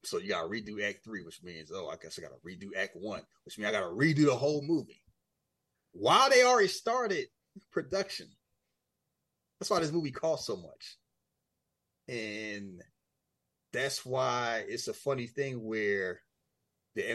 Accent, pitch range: American, 105-170 Hz